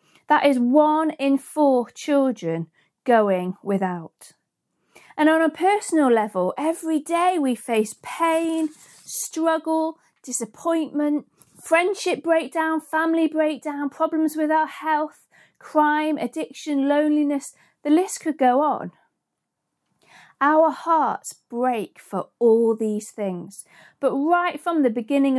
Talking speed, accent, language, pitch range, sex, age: 115 wpm, British, English, 235-320 Hz, female, 40-59